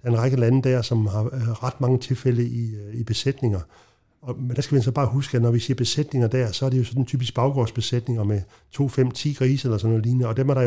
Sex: male